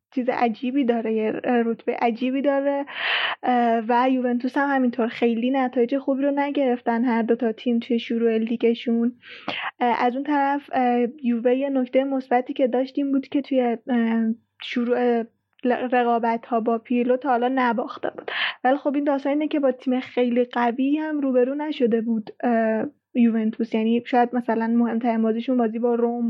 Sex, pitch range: female, 235-270 Hz